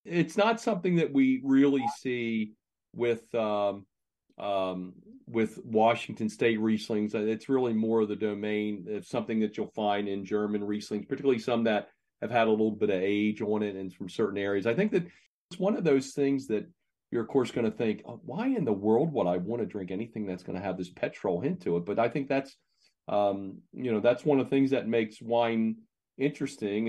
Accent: American